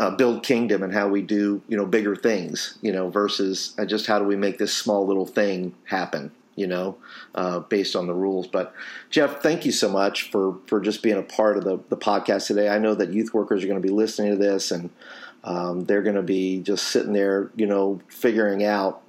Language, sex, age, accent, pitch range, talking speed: English, male, 40-59, American, 100-120 Hz, 230 wpm